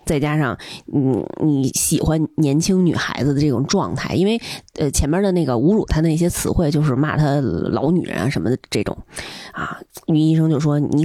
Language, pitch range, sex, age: Chinese, 145-195 Hz, female, 20-39